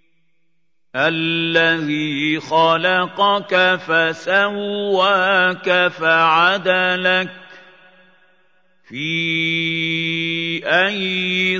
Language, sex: Arabic, male